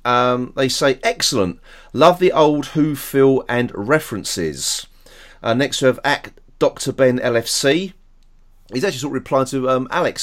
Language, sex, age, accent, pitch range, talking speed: English, male, 30-49, British, 110-150 Hz, 160 wpm